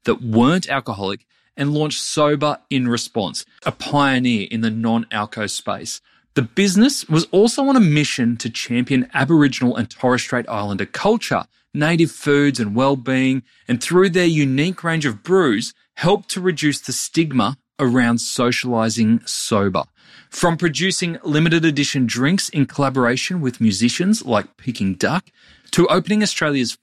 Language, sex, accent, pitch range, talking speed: English, male, Australian, 120-170 Hz, 140 wpm